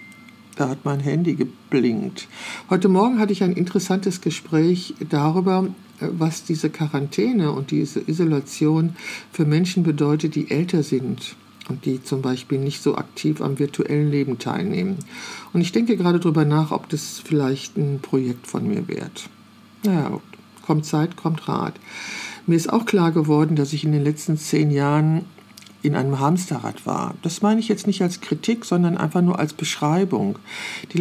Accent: German